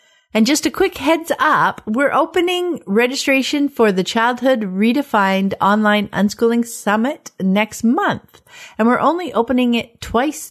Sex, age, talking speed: female, 50-69, 135 wpm